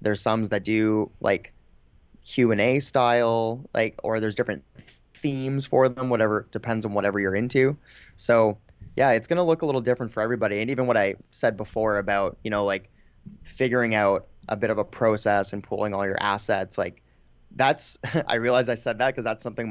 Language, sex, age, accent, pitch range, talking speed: English, male, 20-39, American, 105-130 Hz, 200 wpm